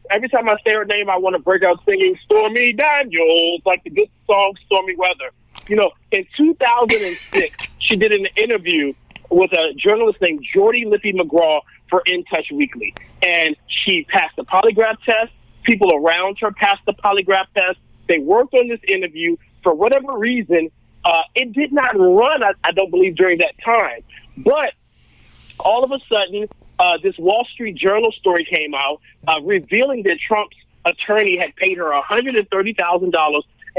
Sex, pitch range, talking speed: male, 185-270 Hz, 165 wpm